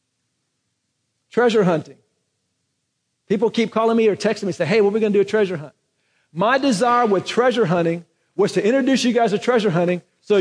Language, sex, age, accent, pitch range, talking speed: English, male, 40-59, American, 165-230 Hz, 200 wpm